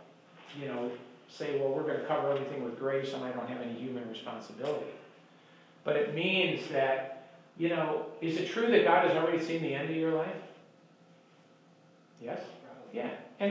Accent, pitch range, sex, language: American, 135-175 Hz, male, English